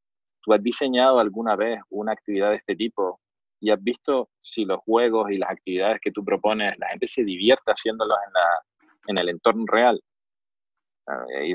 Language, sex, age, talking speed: Spanish, male, 30-49, 180 wpm